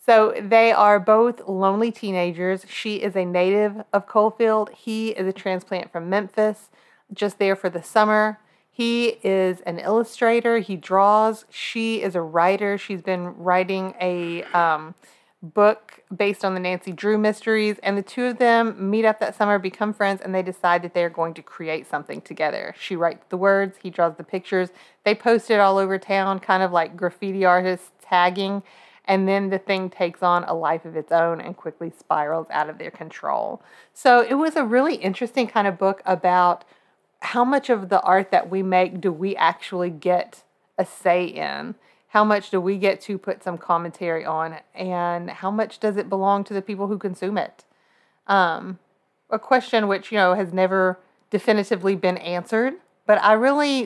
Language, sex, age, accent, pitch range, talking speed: English, female, 30-49, American, 180-215 Hz, 185 wpm